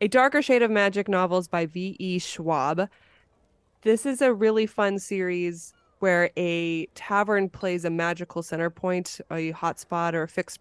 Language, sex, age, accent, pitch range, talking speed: English, female, 20-39, American, 165-195 Hz, 160 wpm